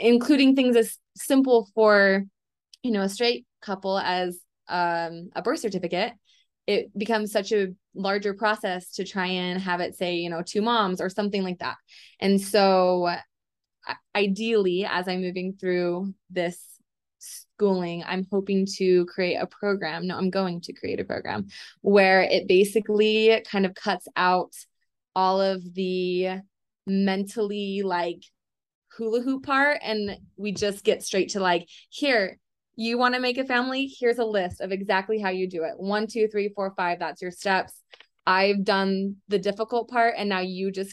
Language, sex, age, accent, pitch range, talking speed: English, female, 20-39, American, 180-210 Hz, 165 wpm